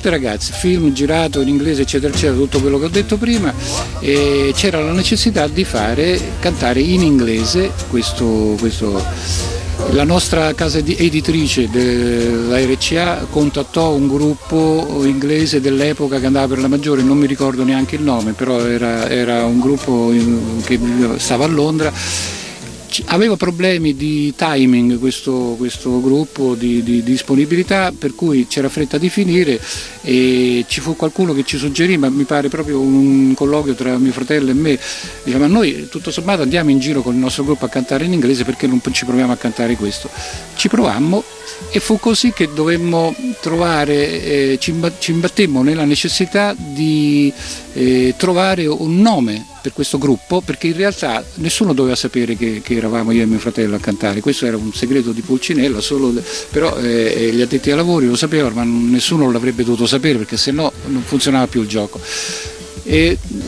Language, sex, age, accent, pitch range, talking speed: Italian, male, 50-69, native, 120-160 Hz, 170 wpm